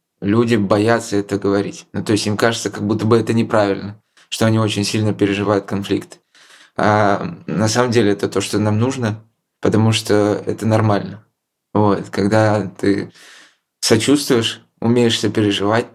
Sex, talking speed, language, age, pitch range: male, 140 wpm, Russian, 20-39, 100-115 Hz